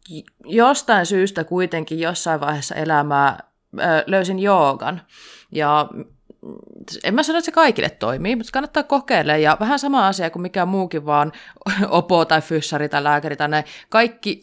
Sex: female